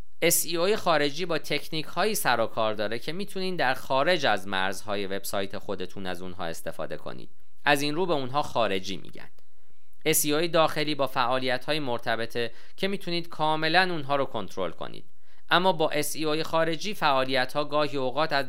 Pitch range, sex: 120-170 Hz, male